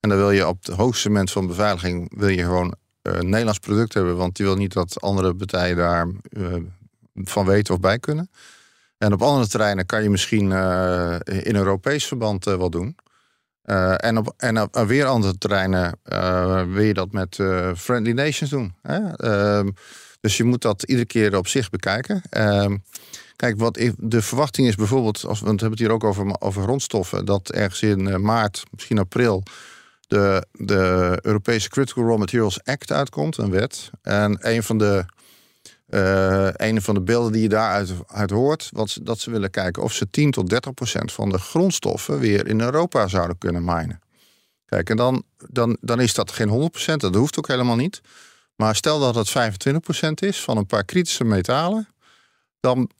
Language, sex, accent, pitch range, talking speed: Dutch, male, Dutch, 95-120 Hz, 180 wpm